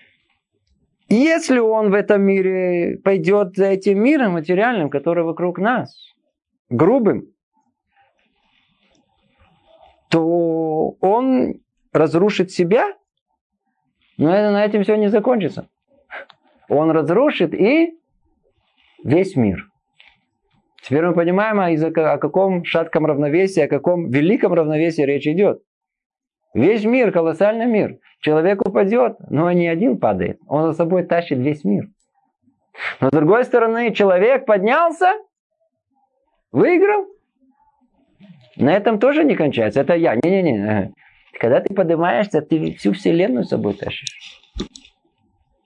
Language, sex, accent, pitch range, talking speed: Russian, male, native, 165-235 Hz, 110 wpm